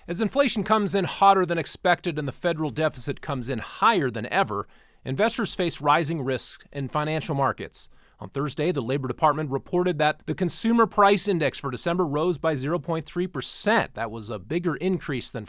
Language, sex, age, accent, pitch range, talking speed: English, male, 30-49, American, 135-185 Hz, 175 wpm